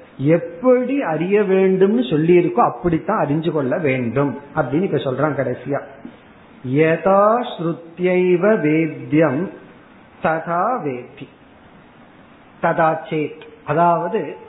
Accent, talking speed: native, 60 wpm